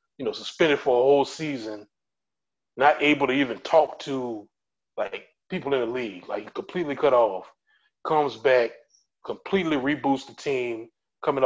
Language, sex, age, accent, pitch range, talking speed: English, male, 30-49, American, 115-160 Hz, 150 wpm